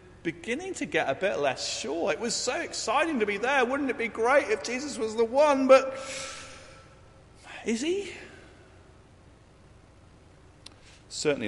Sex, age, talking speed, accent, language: male, 40-59, 140 wpm, British, English